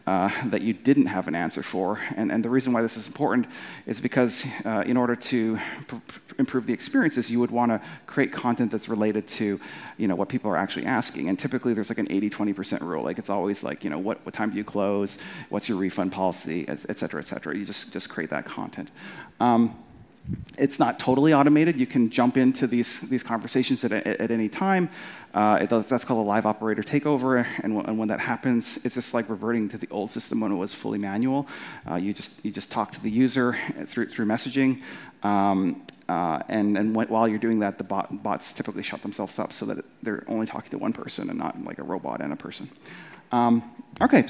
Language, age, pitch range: English, 30-49, 110-145 Hz